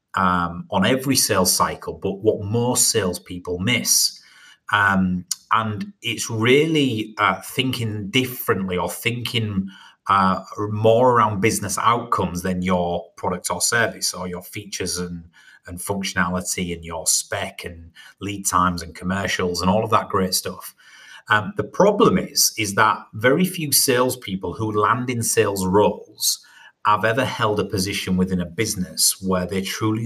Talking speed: 150 wpm